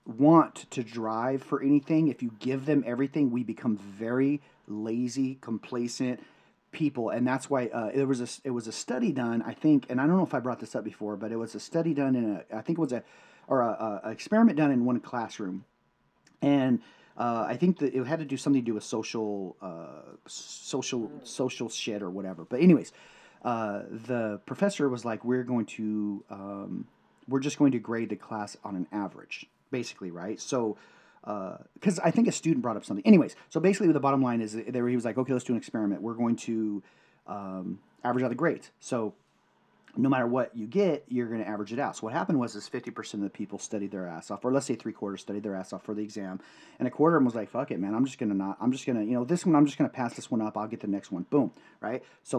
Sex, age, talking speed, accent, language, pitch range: male, 30-49, 245 wpm, American, English, 105-135 Hz